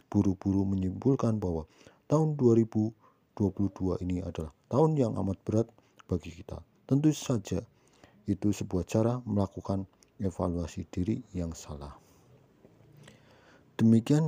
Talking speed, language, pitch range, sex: 100 wpm, English, 95-115 Hz, male